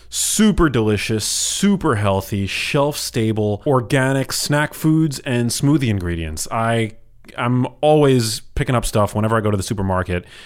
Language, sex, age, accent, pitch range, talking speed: English, male, 30-49, American, 95-115 Hz, 140 wpm